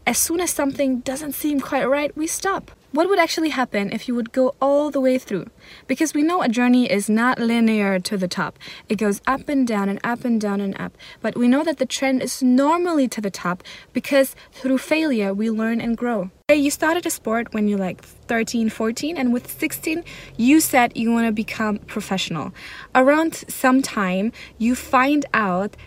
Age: 20-39